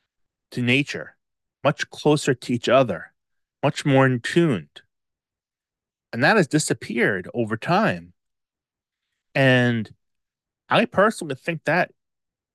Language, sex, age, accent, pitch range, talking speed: English, male, 30-49, American, 110-150 Hz, 105 wpm